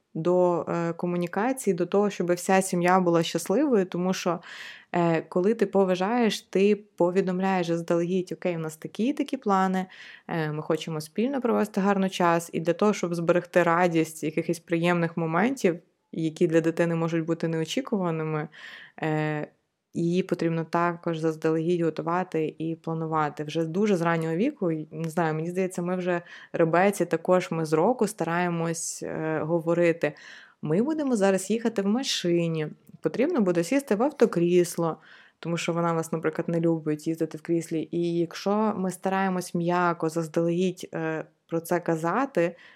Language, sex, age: Ukrainian, female, 20-39